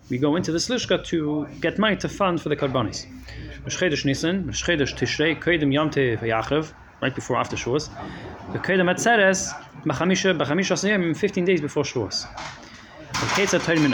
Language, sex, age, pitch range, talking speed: English, male, 30-49, 145-195 Hz, 75 wpm